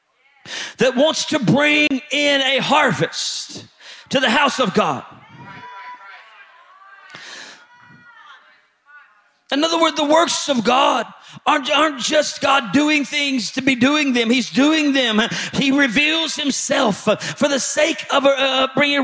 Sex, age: male, 40-59